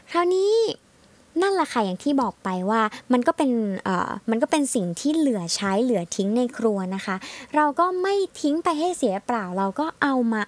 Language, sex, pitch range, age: Thai, male, 210-300 Hz, 20-39